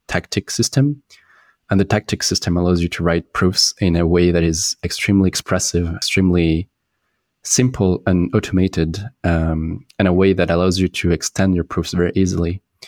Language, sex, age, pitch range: English, male, 20-39, 85-100 Hz